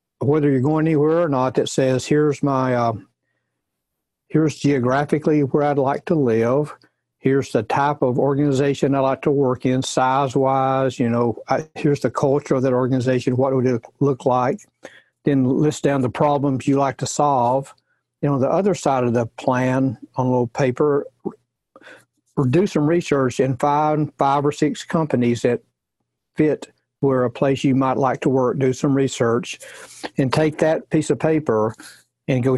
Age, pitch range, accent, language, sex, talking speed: 60-79, 130-145 Hz, American, English, male, 175 wpm